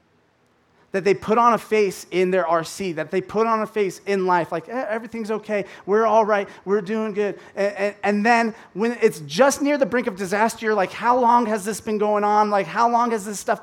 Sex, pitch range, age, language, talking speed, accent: male, 160-215 Hz, 30-49, English, 240 wpm, American